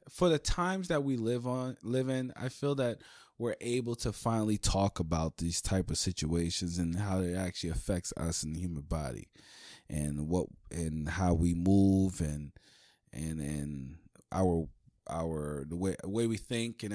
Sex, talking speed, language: male, 175 wpm, English